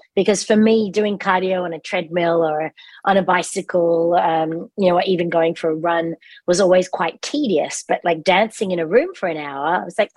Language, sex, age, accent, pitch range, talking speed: English, female, 30-49, Australian, 165-200 Hz, 220 wpm